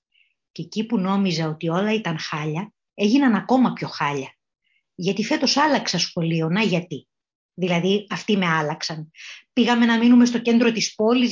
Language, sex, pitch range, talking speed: Greek, female, 180-240 Hz, 155 wpm